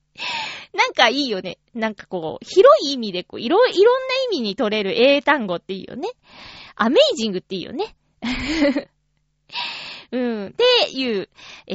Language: Japanese